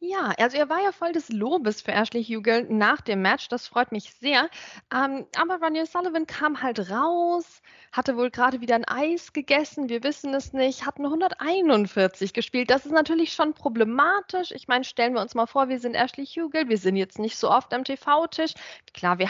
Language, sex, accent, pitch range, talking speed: German, female, German, 235-310 Hz, 205 wpm